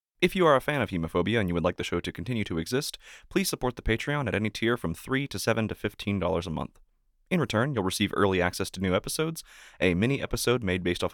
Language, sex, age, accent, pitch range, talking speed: English, male, 20-39, American, 90-125 Hz, 250 wpm